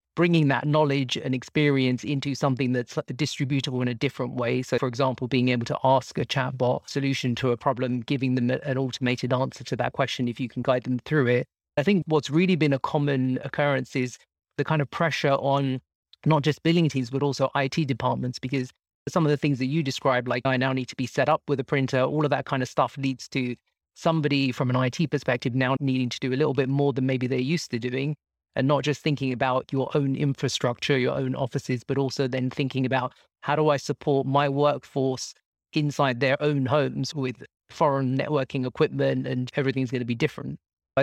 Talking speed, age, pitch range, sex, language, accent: 215 wpm, 30-49, 130-145 Hz, male, English, British